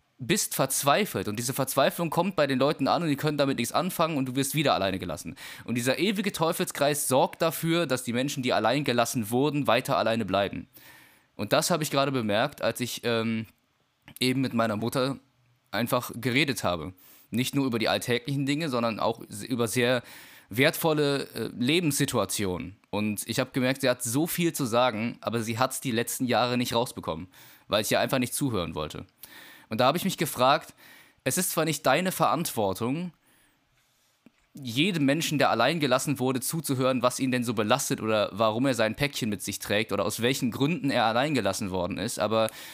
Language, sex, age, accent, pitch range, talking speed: German, male, 20-39, German, 120-150 Hz, 185 wpm